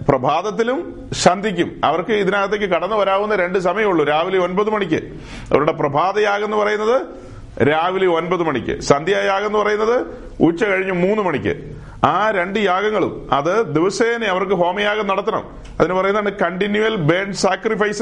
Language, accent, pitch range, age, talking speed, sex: Malayalam, native, 180-225 Hz, 40-59, 125 wpm, male